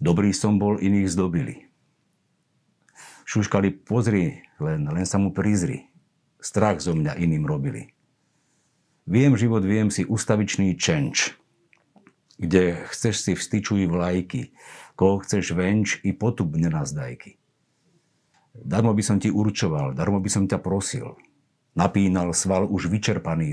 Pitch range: 95-110 Hz